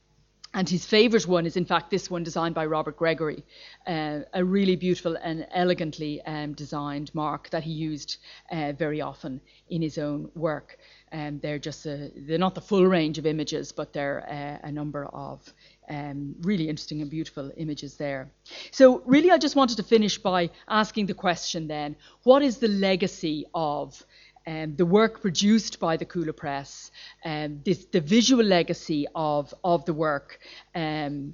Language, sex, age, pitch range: English, female, 30-49, 155-190 Hz